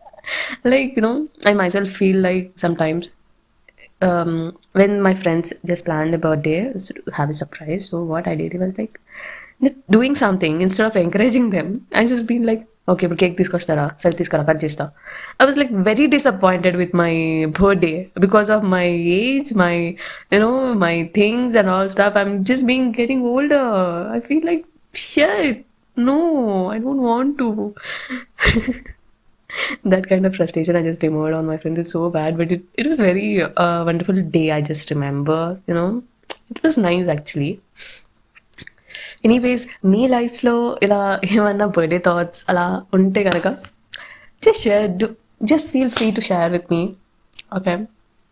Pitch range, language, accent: 175-240 Hz, Telugu, native